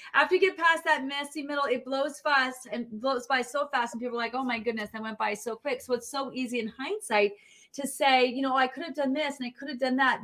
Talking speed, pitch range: 280 wpm, 225-295 Hz